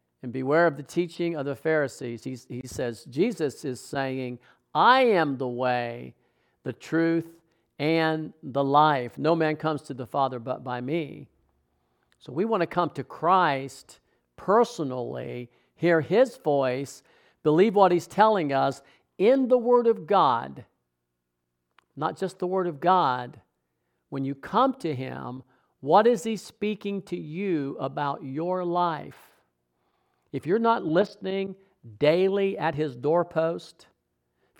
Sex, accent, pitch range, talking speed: male, American, 130-175 Hz, 140 wpm